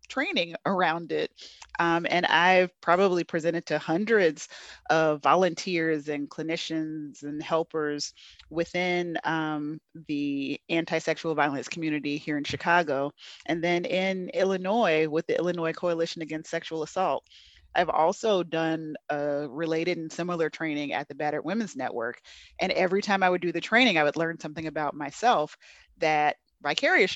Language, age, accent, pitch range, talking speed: English, 30-49, American, 155-185 Hz, 145 wpm